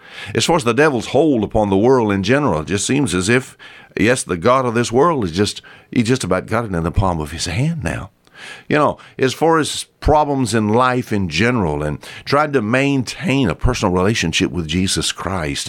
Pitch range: 90-135 Hz